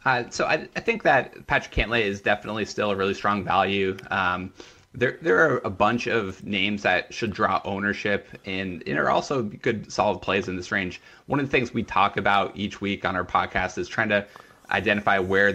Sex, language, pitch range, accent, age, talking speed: male, English, 95-105 Hz, American, 20-39, 210 wpm